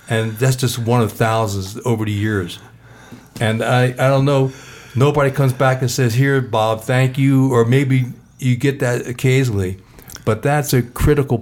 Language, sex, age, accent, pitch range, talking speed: English, male, 60-79, American, 110-135 Hz, 175 wpm